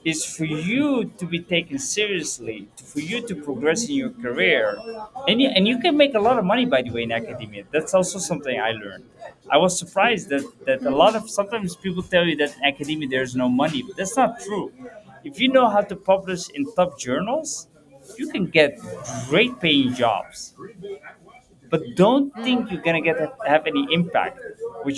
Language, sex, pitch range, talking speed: Arabic, male, 140-200 Hz, 190 wpm